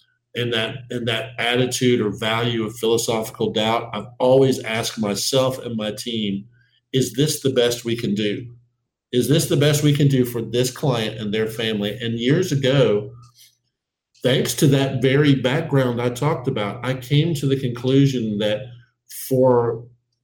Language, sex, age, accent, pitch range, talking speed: English, male, 50-69, American, 115-130 Hz, 155 wpm